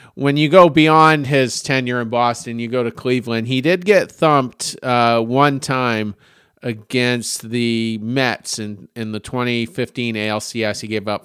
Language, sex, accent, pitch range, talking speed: English, male, American, 105-125 Hz, 160 wpm